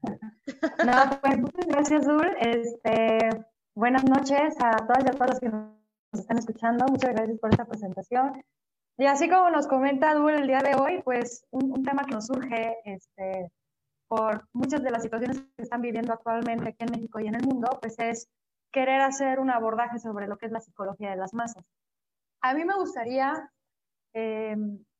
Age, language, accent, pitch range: 20-39, Spanish, Mexican, 220-270 Hz